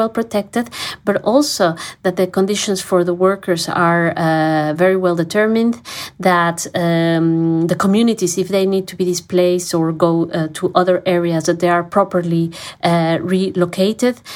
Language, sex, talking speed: English, female, 150 wpm